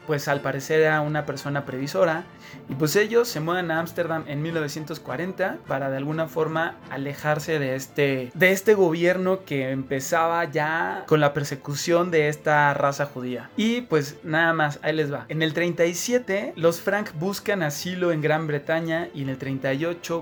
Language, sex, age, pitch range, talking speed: Spanish, male, 20-39, 145-175 Hz, 170 wpm